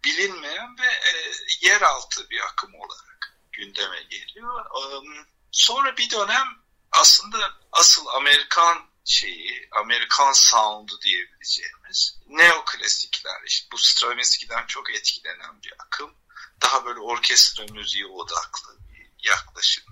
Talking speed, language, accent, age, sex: 100 wpm, Turkish, native, 50-69, male